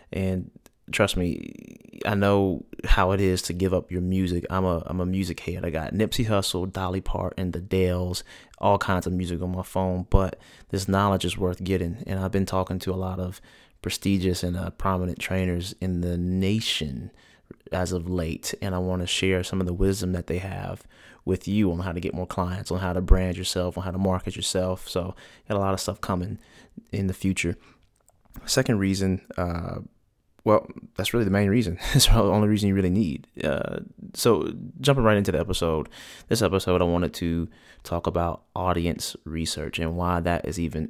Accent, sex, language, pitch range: American, male, English, 85-95 Hz